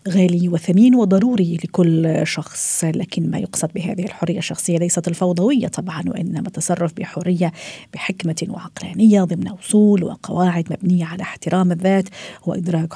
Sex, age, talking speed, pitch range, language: female, 40-59, 125 wpm, 170-195 Hz, Arabic